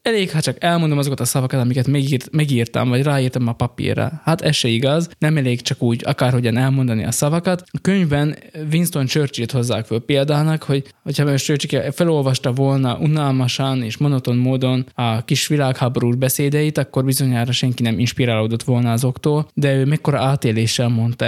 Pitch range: 120-145 Hz